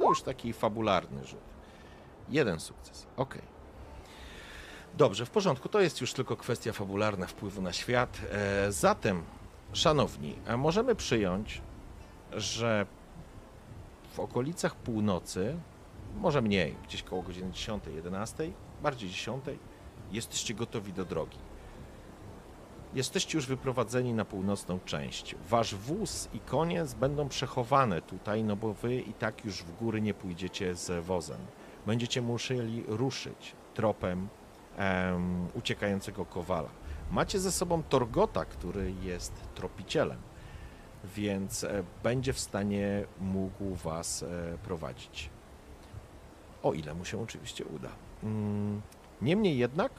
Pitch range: 90-120 Hz